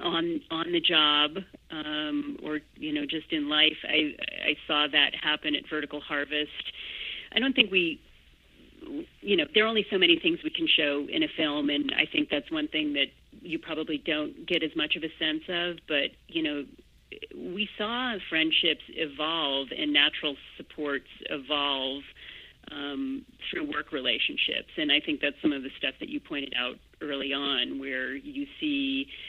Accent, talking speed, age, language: American, 175 wpm, 40-59, English